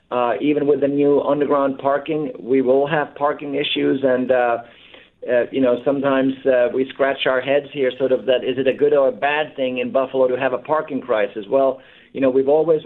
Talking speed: 220 wpm